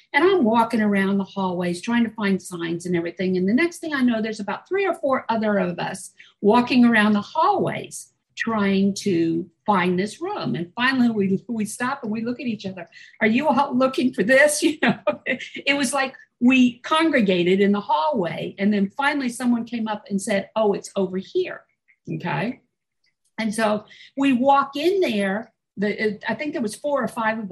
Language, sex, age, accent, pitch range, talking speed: English, female, 50-69, American, 200-270 Hz, 200 wpm